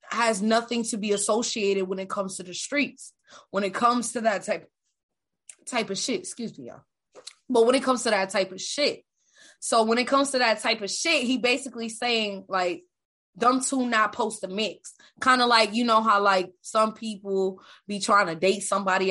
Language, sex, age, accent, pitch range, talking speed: English, female, 20-39, American, 205-270 Hz, 205 wpm